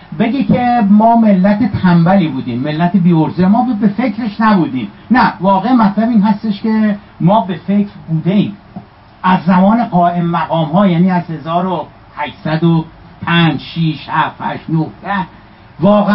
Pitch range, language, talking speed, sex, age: 160-200 Hz, Persian, 125 wpm, male, 60-79